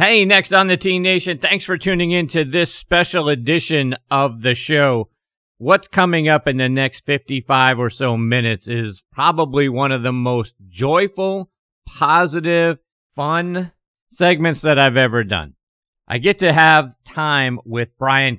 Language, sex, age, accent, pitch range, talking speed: English, male, 50-69, American, 115-145 Hz, 155 wpm